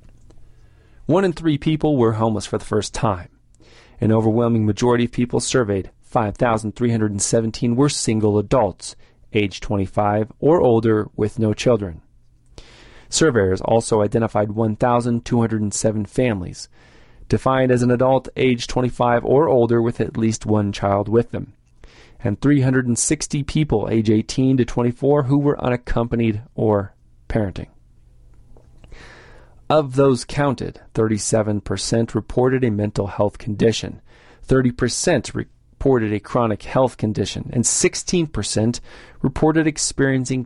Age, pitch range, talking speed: 40-59, 105-125 Hz, 115 wpm